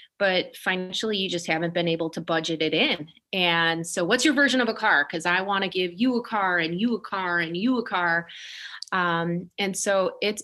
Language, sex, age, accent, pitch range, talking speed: English, female, 30-49, American, 165-195 Hz, 225 wpm